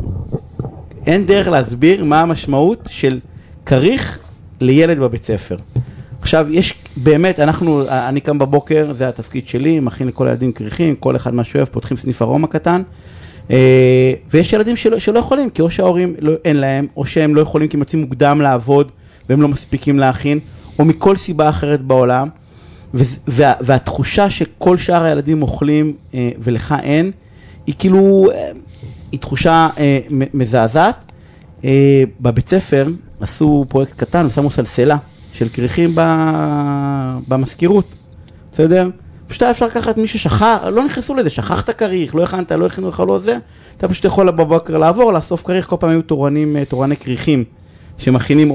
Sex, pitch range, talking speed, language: male, 125-165 Hz, 145 wpm, Hebrew